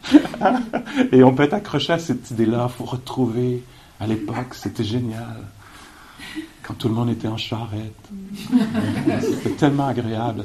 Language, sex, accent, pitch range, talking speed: English, male, French, 105-135 Hz, 145 wpm